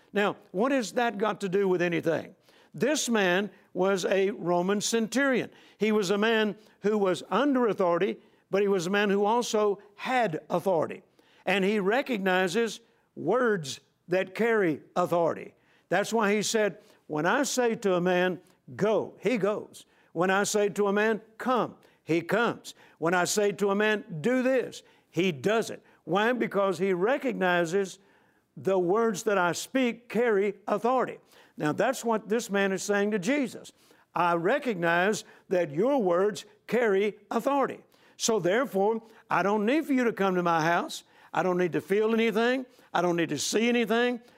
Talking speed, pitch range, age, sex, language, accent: 165 wpm, 180-230 Hz, 60-79, male, English, American